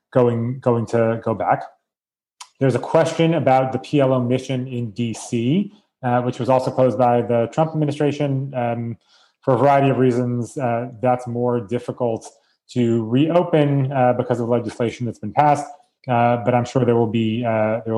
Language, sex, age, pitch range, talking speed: English, male, 30-49, 115-135 Hz, 170 wpm